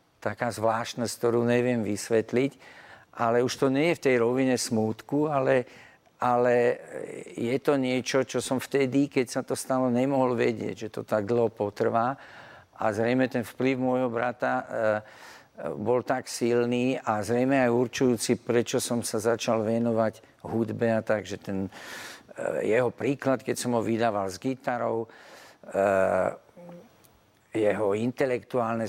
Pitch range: 115-135 Hz